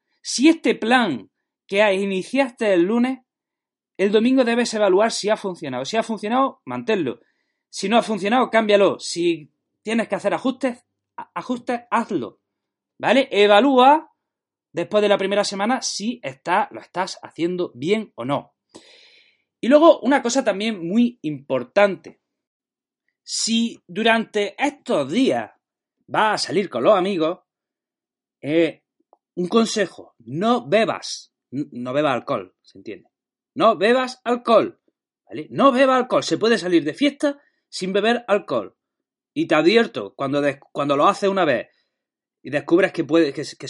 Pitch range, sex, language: 175-255 Hz, male, Spanish